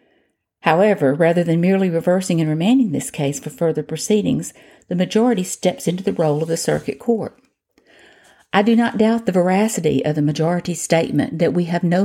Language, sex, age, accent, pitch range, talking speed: English, female, 50-69, American, 155-195 Hz, 180 wpm